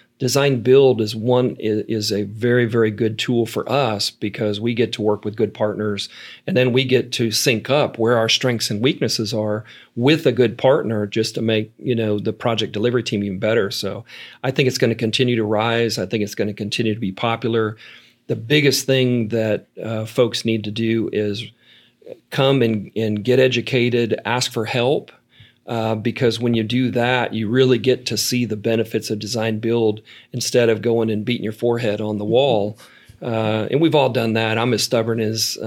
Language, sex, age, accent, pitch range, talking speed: English, male, 40-59, American, 110-125 Hz, 205 wpm